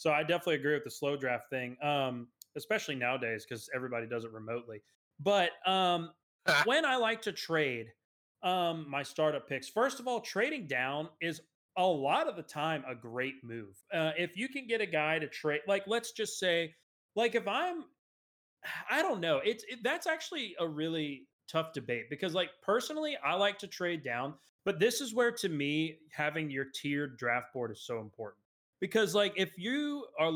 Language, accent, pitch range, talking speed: English, American, 130-195 Hz, 185 wpm